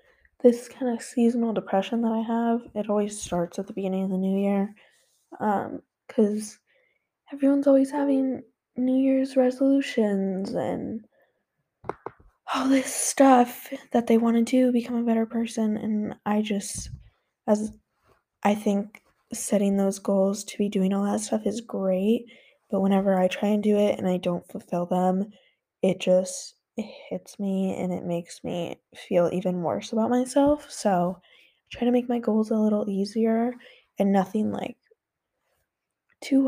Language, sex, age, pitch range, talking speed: English, female, 10-29, 205-250 Hz, 160 wpm